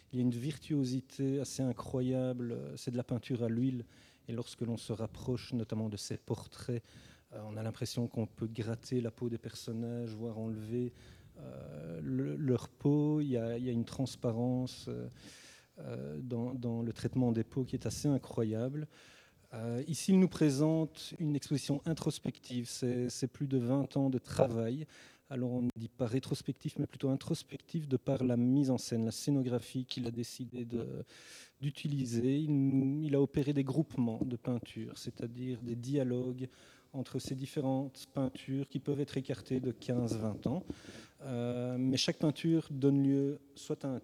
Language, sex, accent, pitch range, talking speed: French, male, French, 120-140 Hz, 160 wpm